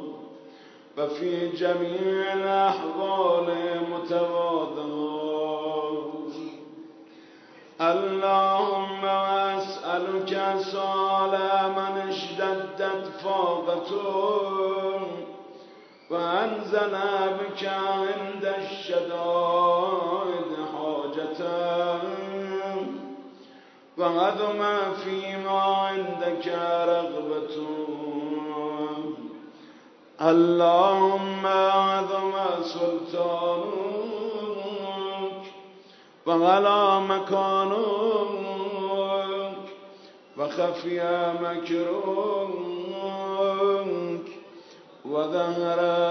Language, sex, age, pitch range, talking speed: Persian, male, 50-69, 170-195 Hz, 40 wpm